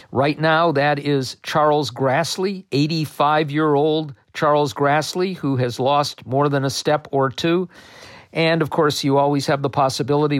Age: 50-69